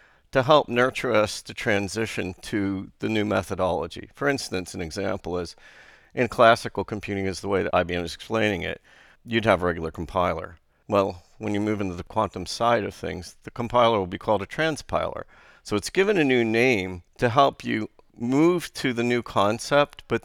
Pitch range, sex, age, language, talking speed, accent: 95-115 Hz, male, 50-69, English, 185 wpm, American